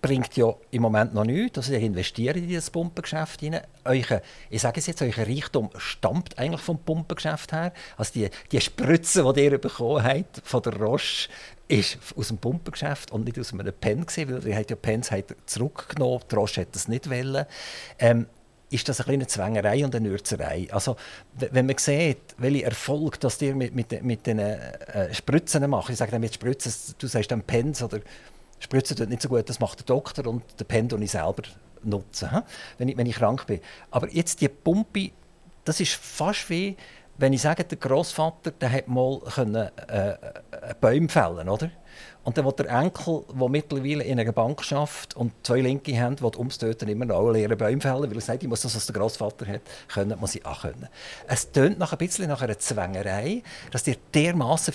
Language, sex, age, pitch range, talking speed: German, male, 50-69, 115-150 Hz, 195 wpm